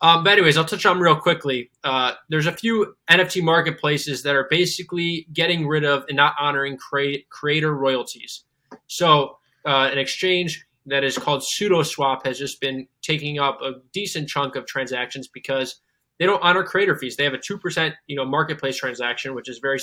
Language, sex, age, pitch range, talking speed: English, male, 20-39, 135-155 Hz, 190 wpm